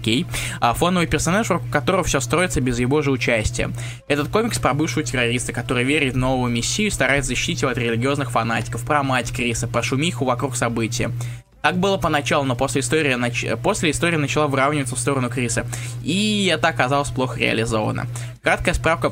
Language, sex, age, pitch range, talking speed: Russian, male, 20-39, 120-150 Hz, 175 wpm